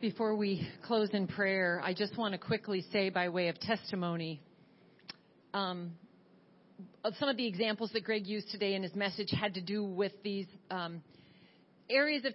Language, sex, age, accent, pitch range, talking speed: English, female, 40-59, American, 195-230 Hz, 175 wpm